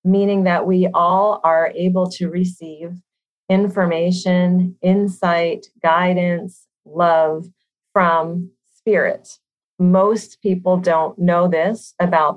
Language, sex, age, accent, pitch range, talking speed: English, female, 40-59, American, 165-195 Hz, 95 wpm